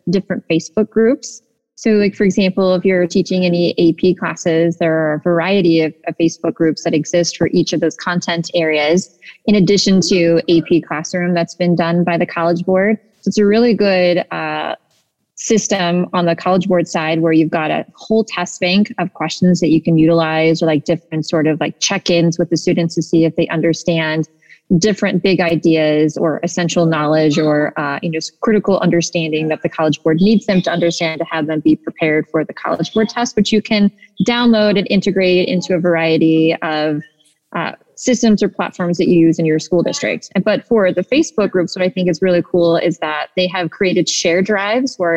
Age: 20-39